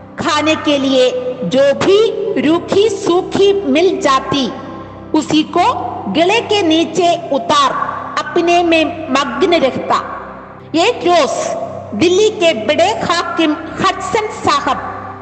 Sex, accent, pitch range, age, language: female, native, 280-365 Hz, 50-69, Malayalam